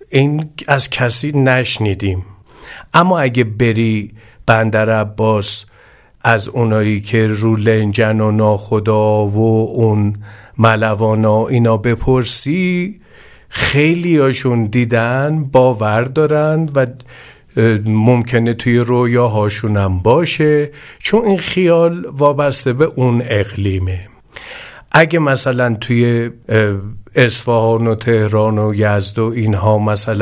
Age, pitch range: 50-69, 105-125 Hz